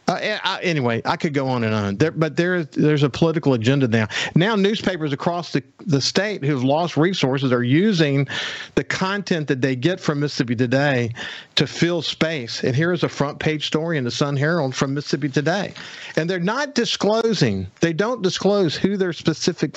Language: English